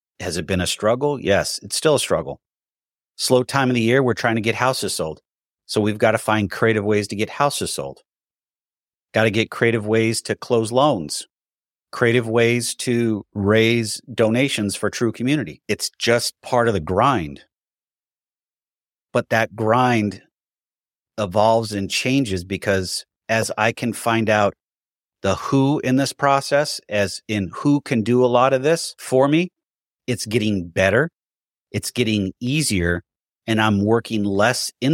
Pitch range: 100-125 Hz